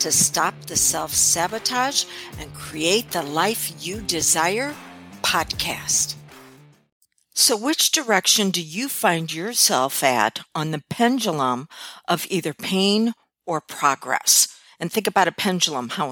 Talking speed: 125 wpm